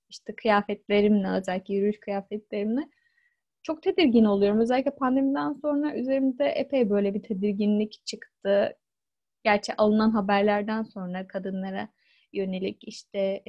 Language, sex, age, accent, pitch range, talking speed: Turkish, female, 10-29, native, 200-230 Hz, 105 wpm